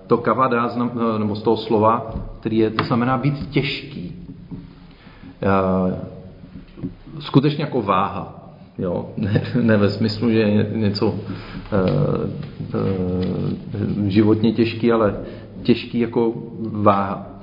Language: Czech